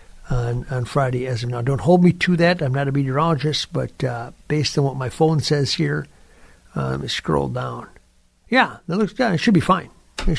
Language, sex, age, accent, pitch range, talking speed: English, male, 50-69, American, 125-155 Hz, 225 wpm